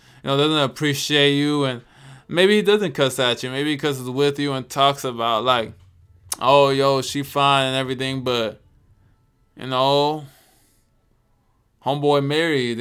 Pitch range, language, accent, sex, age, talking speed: 110-140 Hz, English, American, male, 20-39, 150 wpm